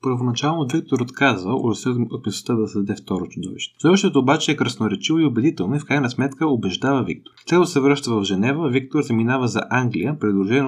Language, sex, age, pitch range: Bulgarian, male, 20-39, 110-140 Hz